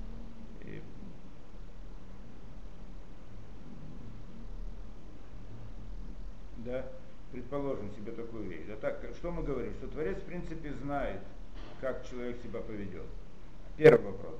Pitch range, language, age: 120-170 Hz, Russian, 50-69